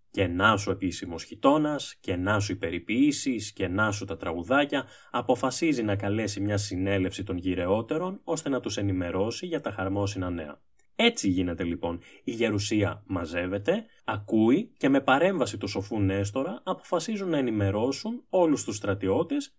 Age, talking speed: 20-39, 145 wpm